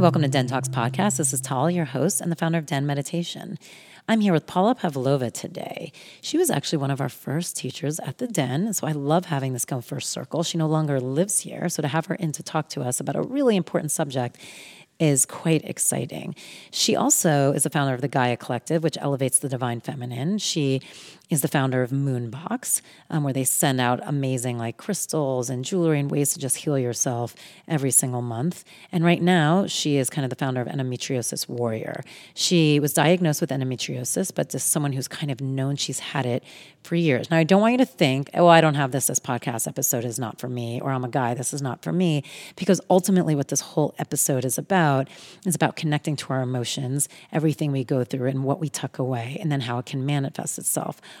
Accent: American